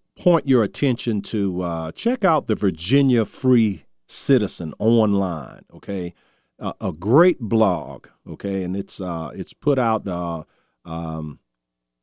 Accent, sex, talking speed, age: American, male, 135 wpm, 50-69